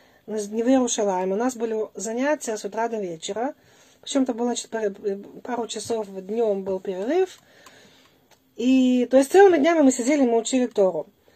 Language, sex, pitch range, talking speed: Russian, female, 210-265 Hz, 150 wpm